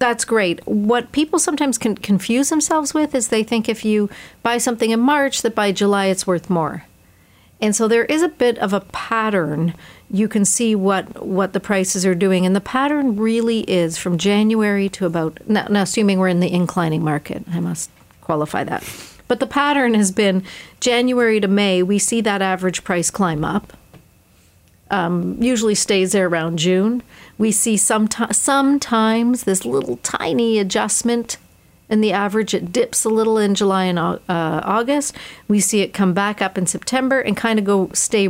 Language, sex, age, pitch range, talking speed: English, female, 40-59, 180-230 Hz, 180 wpm